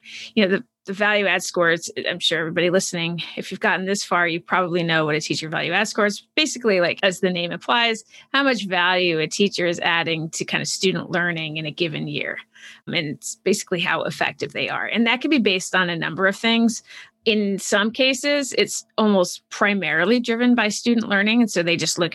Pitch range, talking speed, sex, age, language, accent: 175-225 Hz, 215 wpm, female, 30-49, English, American